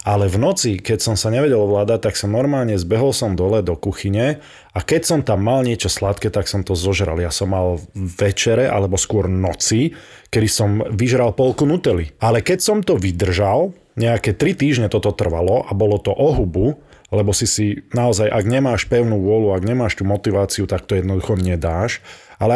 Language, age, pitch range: Slovak, 20-39, 100-135 Hz